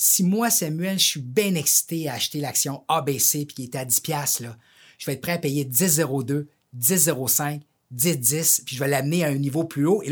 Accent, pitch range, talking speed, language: Canadian, 145-205 Hz, 215 wpm, French